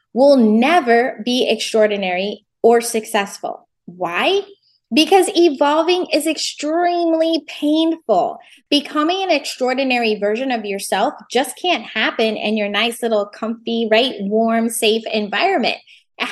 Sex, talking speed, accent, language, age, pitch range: female, 115 wpm, American, English, 20-39, 220-300 Hz